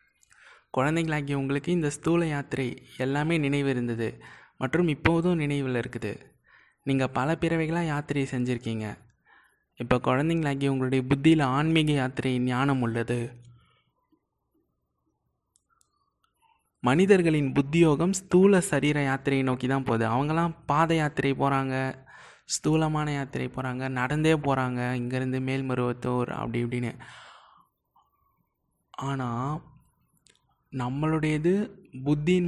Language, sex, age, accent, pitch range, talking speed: Tamil, male, 20-39, native, 125-160 Hz, 85 wpm